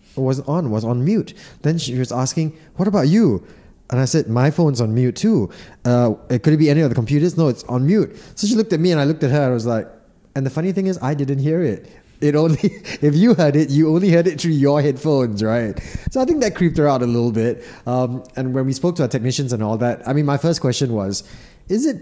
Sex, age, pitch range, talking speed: male, 20-39, 115-150 Hz, 265 wpm